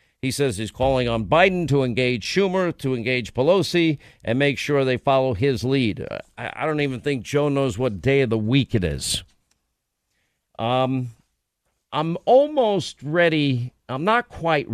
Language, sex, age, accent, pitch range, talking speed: English, male, 50-69, American, 125-170 Hz, 160 wpm